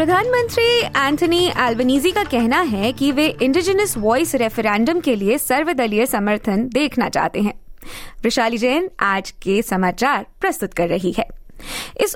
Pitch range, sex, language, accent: 210-315 Hz, female, Hindi, native